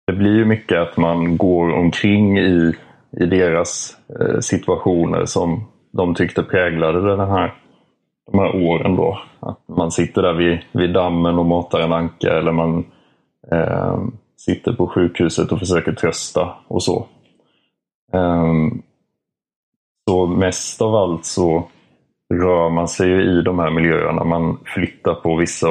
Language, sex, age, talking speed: Swedish, male, 30-49, 145 wpm